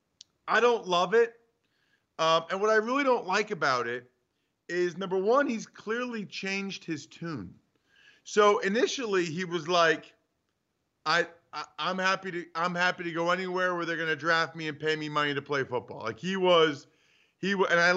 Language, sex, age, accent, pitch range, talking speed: English, male, 40-59, American, 165-200 Hz, 180 wpm